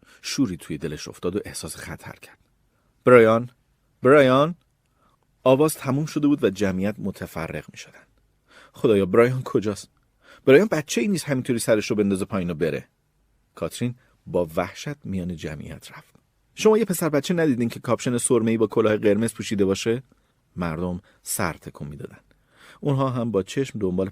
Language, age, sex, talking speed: Persian, 40-59, male, 150 wpm